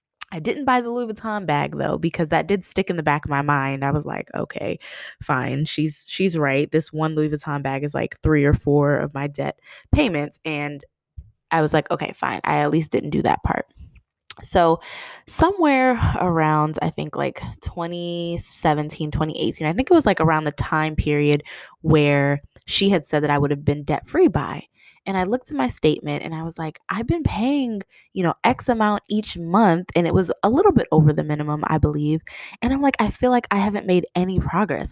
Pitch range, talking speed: 150-200 Hz, 210 wpm